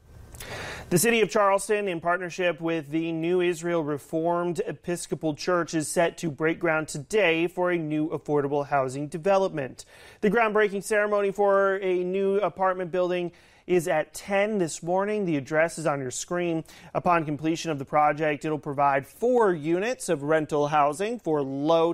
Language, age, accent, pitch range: English, 30-49, American, 150-180 Hz